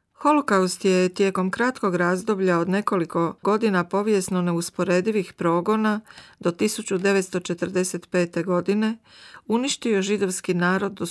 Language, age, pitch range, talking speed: Croatian, 40-59, 180-220 Hz, 95 wpm